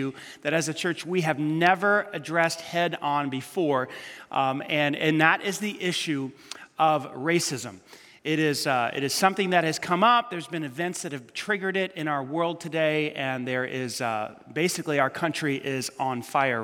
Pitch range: 135-175 Hz